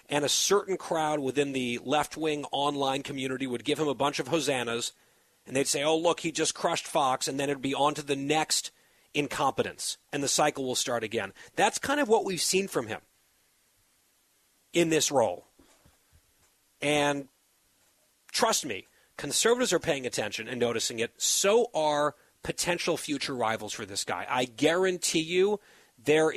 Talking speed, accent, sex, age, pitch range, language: 165 wpm, American, male, 40-59, 125-160 Hz, English